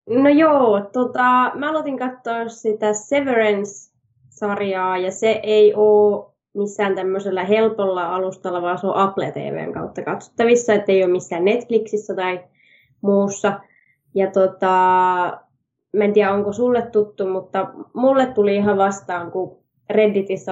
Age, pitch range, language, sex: 20-39, 185-215 Hz, Finnish, female